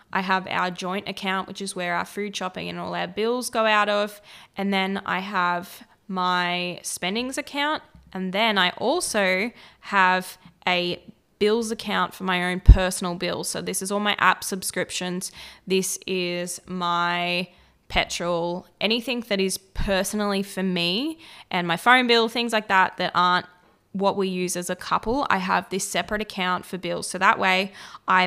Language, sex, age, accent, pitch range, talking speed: English, female, 10-29, Australian, 180-210 Hz, 170 wpm